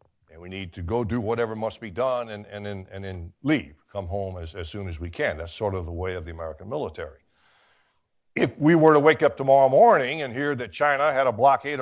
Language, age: English, 60-79